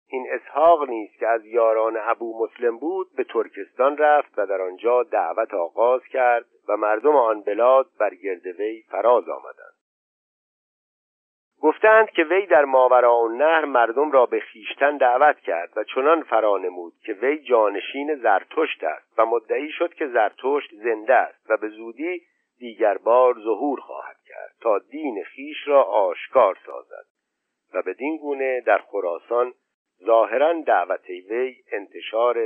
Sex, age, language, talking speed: male, 50-69, Persian, 140 wpm